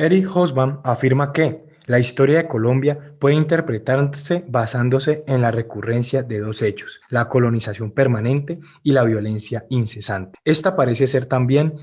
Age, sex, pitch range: 20-39, male, 115-145 Hz